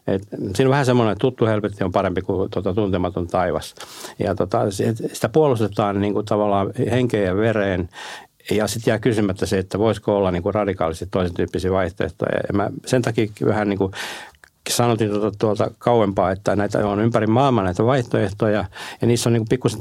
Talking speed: 180 wpm